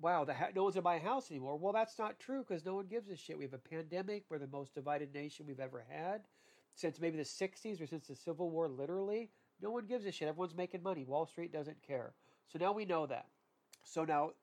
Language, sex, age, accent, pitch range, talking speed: English, male, 40-59, American, 150-195 Hz, 250 wpm